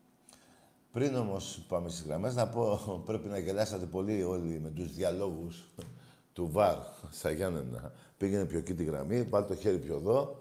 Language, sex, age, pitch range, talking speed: Greek, male, 50-69, 95-130 Hz, 165 wpm